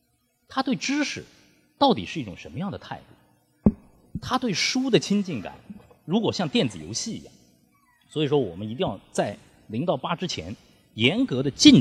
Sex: male